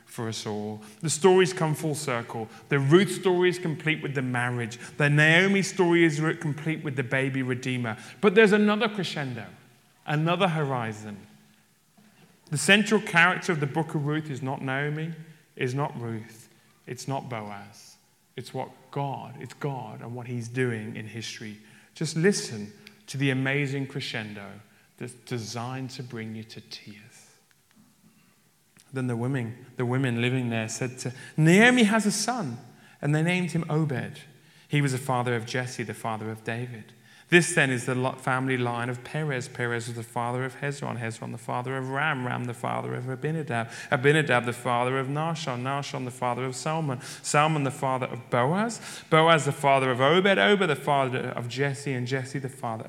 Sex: male